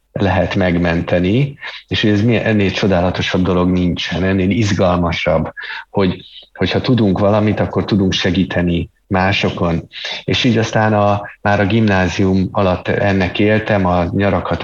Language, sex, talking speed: Hungarian, male, 125 wpm